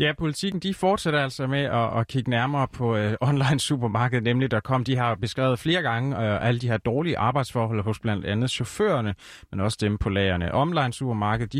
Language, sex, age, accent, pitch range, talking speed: Danish, male, 30-49, native, 105-135 Hz, 200 wpm